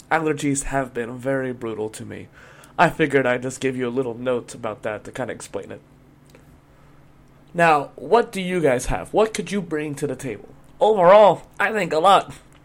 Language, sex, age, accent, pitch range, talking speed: English, male, 30-49, American, 135-165 Hz, 195 wpm